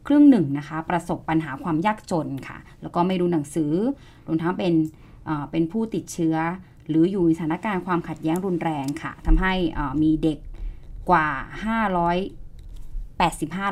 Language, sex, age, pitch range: Thai, female, 20-39, 155-185 Hz